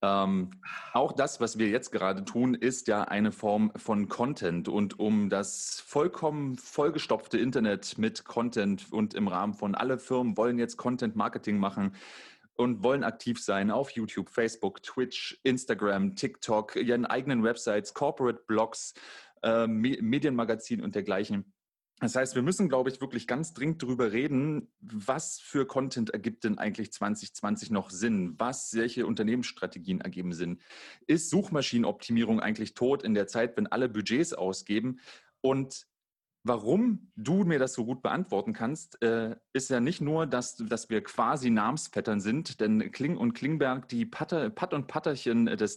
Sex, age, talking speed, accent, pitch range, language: male, 30-49, 155 wpm, German, 105-135 Hz, German